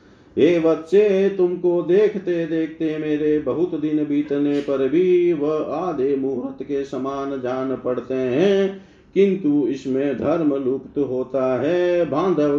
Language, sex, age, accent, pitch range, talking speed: Hindi, male, 50-69, native, 135-165 Hz, 115 wpm